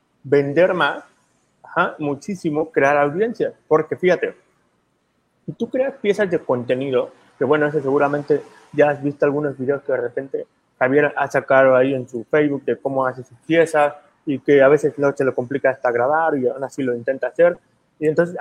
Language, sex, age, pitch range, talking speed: Spanish, male, 30-49, 145-210 Hz, 185 wpm